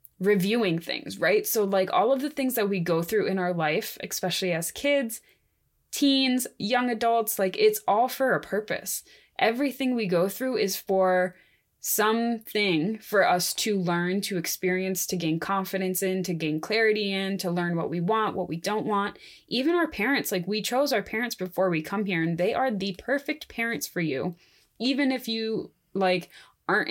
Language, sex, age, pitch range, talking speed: English, female, 20-39, 180-225 Hz, 185 wpm